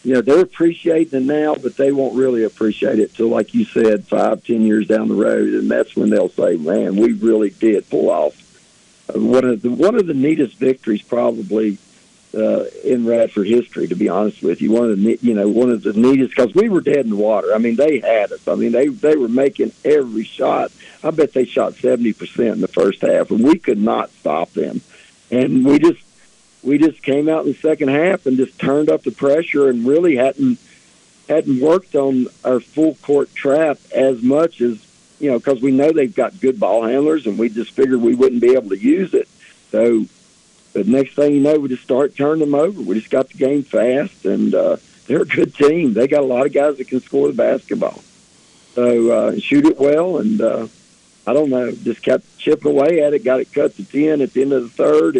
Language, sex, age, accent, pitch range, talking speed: English, male, 50-69, American, 115-150 Hz, 225 wpm